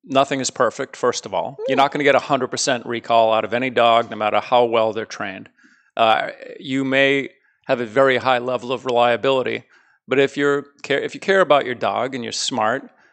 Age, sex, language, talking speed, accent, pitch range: 40-59, male, English, 215 wpm, American, 115-135 Hz